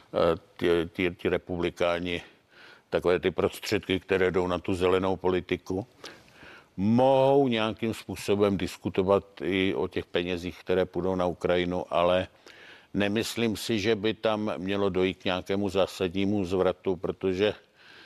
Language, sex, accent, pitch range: Czech, male, native, 90-105 Hz